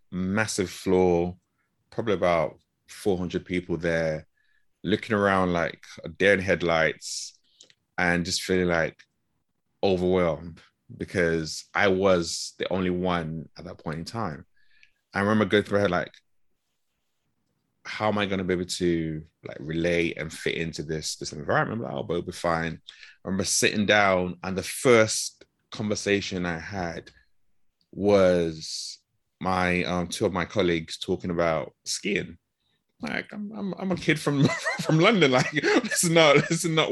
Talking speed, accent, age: 150 wpm, British, 20-39